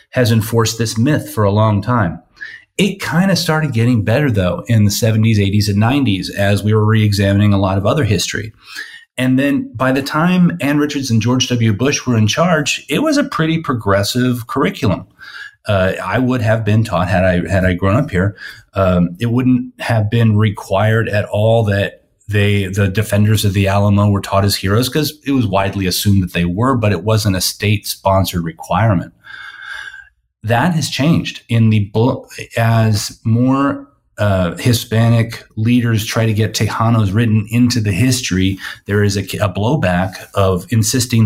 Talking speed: 175 wpm